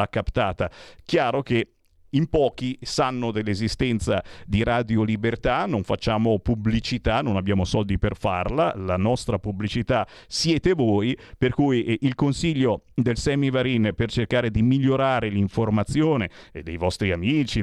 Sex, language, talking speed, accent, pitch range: male, Italian, 130 wpm, native, 110-150 Hz